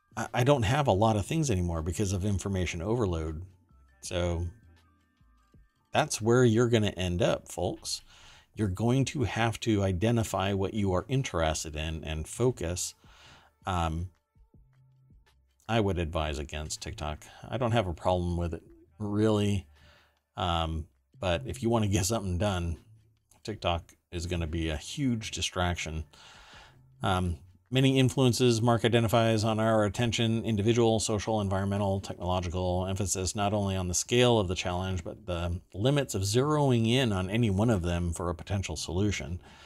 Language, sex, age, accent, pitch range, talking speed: English, male, 40-59, American, 85-110 Hz, 155 wpm